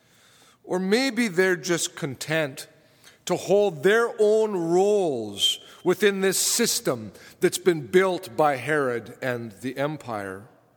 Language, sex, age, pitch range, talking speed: English, male, 50-69, 155-200 Hz, 115 wpm